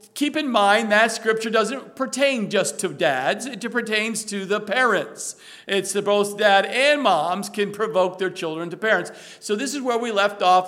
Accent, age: American, 50-69